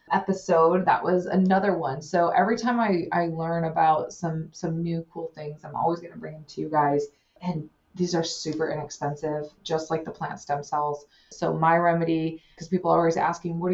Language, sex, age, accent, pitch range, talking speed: English, female, 20-39, American, 150-175 Hz, 200 wpm